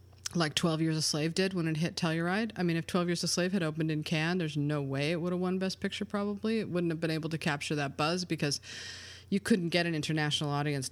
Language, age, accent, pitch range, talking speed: English, 30-49, American, 135-175 Hz, 260 wpm